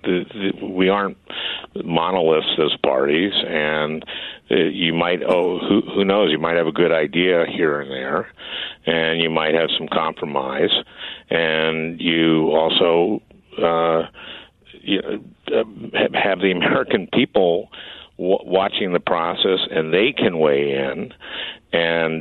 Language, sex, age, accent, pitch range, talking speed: English, male, 60-79, American, 80-90 Hz, 135 wpm